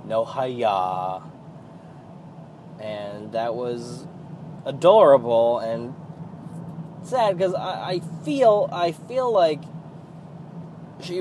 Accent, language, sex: American, English, male